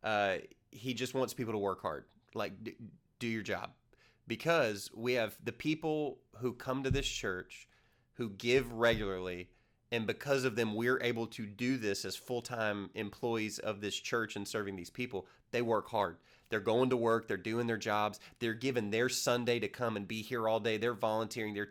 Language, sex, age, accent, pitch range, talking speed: English, male, 30-49, American, 105-120 Hz, 195 wpm